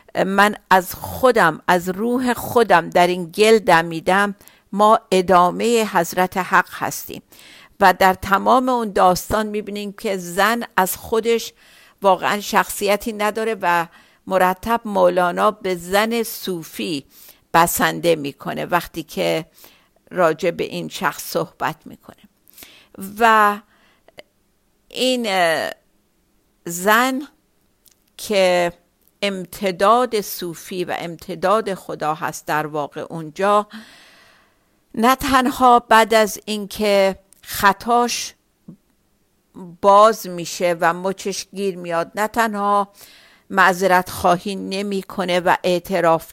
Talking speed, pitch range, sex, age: 100 wpm, 180-215 Hz, female, 50-69